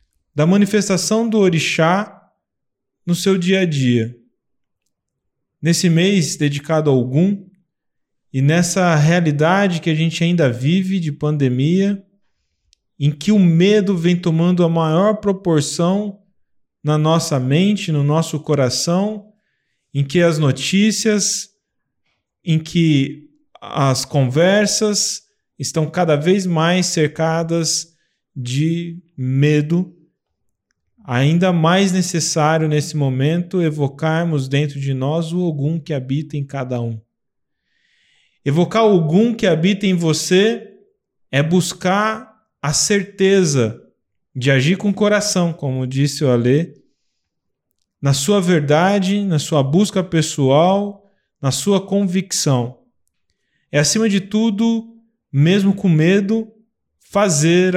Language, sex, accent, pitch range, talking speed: Portuguese, male, Brazilian, 145-195 Hz, 110 wpm